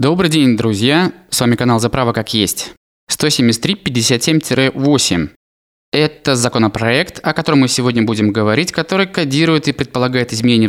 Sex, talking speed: male, 130 wpm